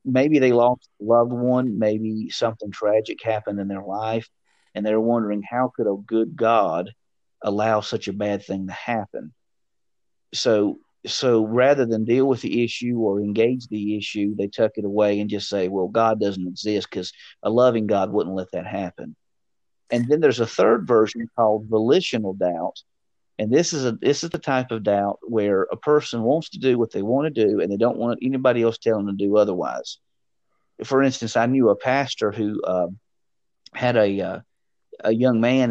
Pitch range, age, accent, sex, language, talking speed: 105-125 Hz, 40-59, American, male, English, 190 wpm